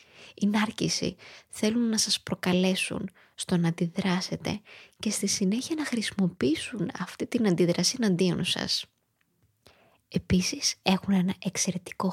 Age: 20-39